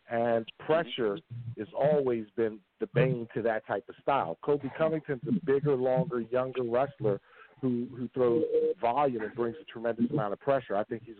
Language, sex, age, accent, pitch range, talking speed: English, male, 50-69, American, 115-155 Hz, 175 wpm